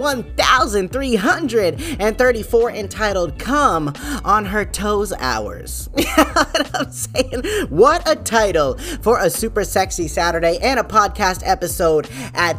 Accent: American